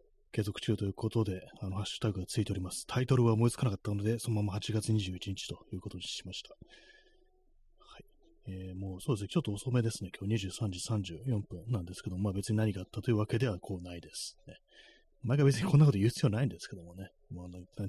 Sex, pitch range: male, 95-125 Hz